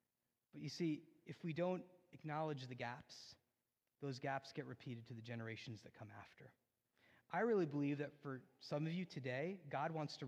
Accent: American